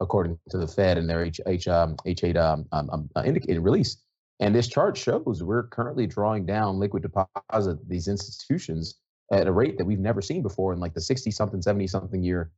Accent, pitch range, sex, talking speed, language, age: American, 85-95 Hz, male, 175 wpm, English, 30-49